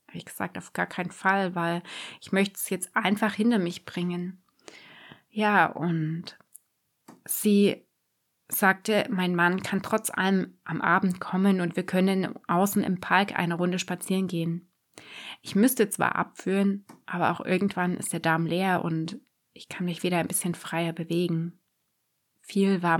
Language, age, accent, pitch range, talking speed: German, 20-39, German, 175-205 Hz, 155 wpm